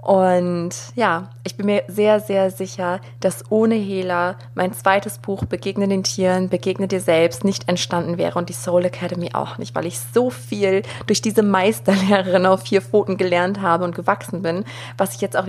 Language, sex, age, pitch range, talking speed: German, female, 20-39, 155-195 Hz, 185 wpm